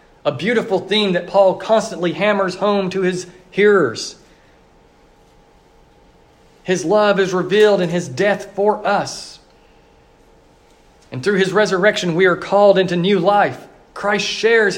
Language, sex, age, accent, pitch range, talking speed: English, male, 40-59, American, 165-205 Hz, 130 wpm